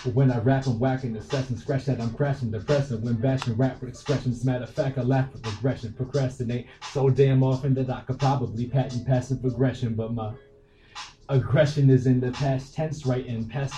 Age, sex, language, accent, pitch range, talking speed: 20-39, male, English, American, 125-140 Hz, 205 wpm